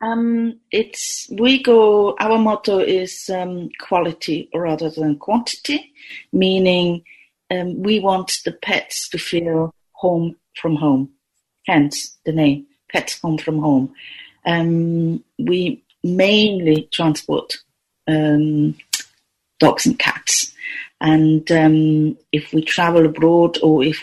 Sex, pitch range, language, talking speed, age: female, 150-175 Hz, English, 115 wpm, 40-59